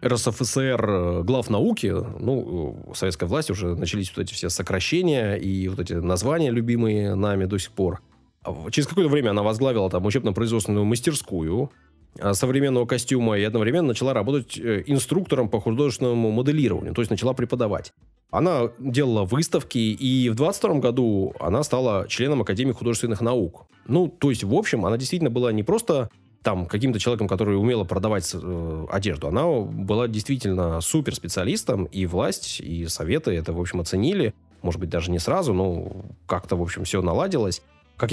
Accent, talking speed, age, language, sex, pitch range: native, 155 wpm, 20-39, Russian, male, 95-125 Hz